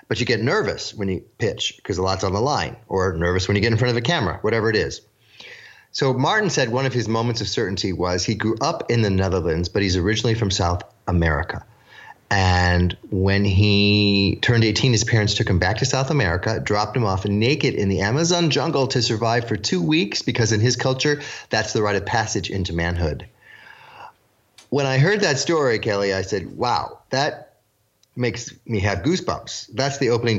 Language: English